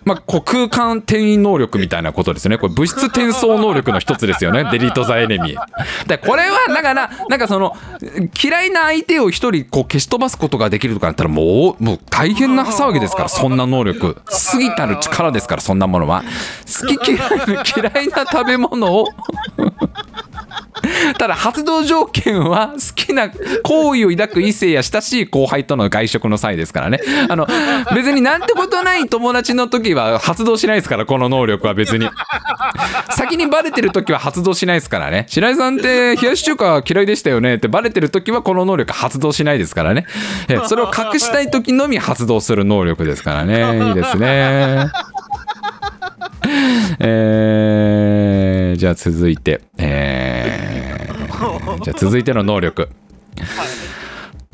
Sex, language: male, Japanese